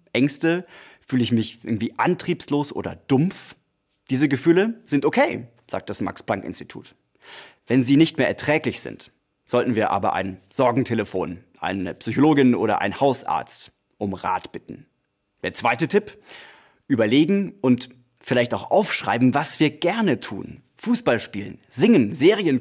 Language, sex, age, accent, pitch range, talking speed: German, male, 30-49, German, 115-150 Hz, 135 wpm